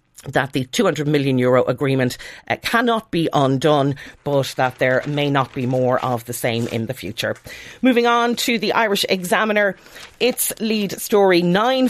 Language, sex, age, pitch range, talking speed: English, female, 40-59, 135-190 Hz, 165 wpm